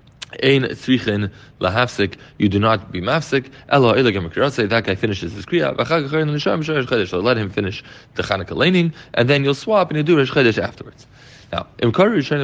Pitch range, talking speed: 105-140 Hz, 190 wpm